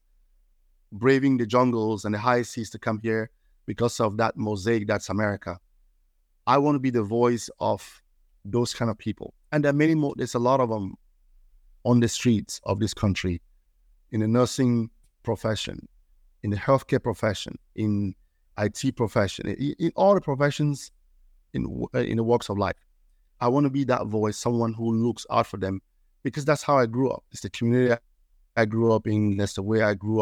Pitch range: 95-125 Hz